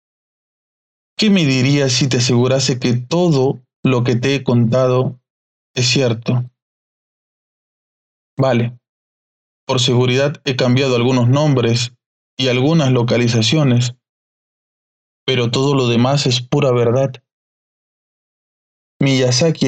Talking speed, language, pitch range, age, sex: 100 wpm, Spanish, 120-145 Hz, 20-39, male